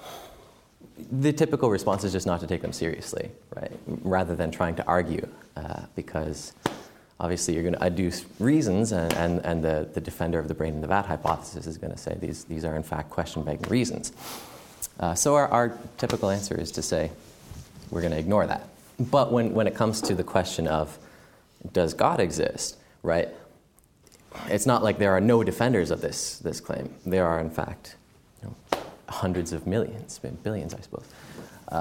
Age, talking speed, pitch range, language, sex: 30-49, 190 wpm, 85-115 Hz, English, male